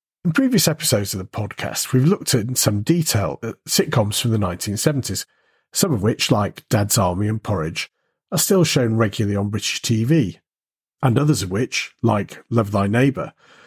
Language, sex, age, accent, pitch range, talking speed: English, male, 40-59, British, 105-145 Hz, 170 wpm